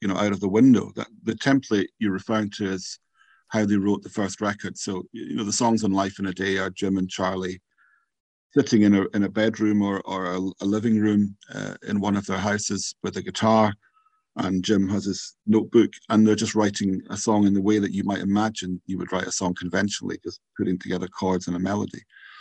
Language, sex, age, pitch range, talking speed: Dutch, male, 50-69, 95-110 Hz, 230 wpm